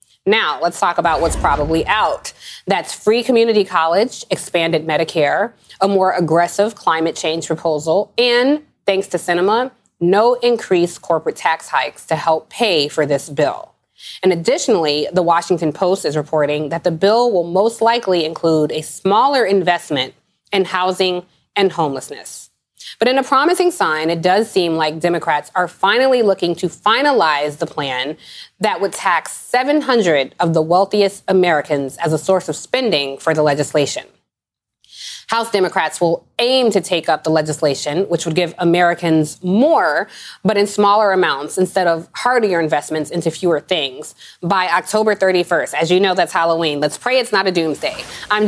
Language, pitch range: English, 165-210 Hz